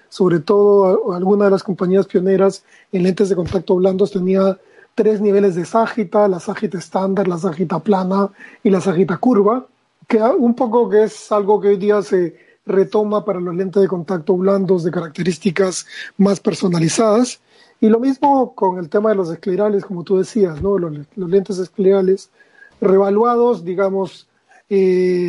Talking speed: 160 wpm